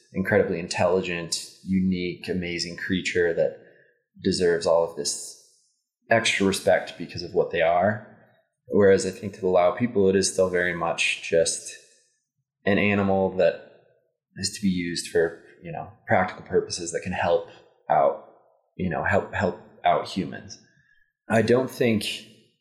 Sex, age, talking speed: male, 20-39, 145 wpm